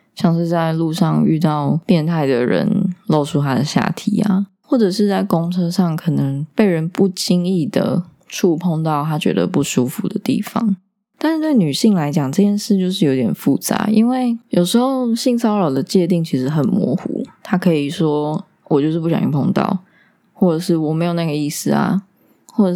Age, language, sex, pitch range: 20-39, Chinese, female, 155-205 Hz